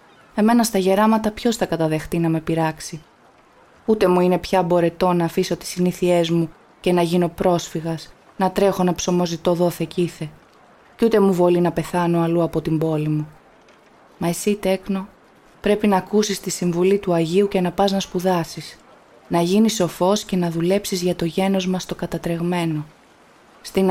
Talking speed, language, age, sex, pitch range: 170 wpm, Greek, 20-39, female, 170-200 Hz